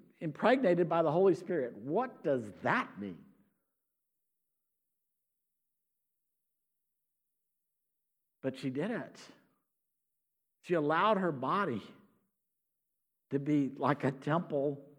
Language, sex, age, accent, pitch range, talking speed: English, male, 60-79, American, 140-195 Hz, 90 wpm